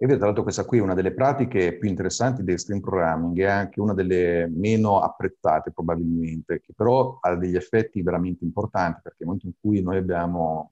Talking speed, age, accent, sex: 195 wpm, 50-69, native, male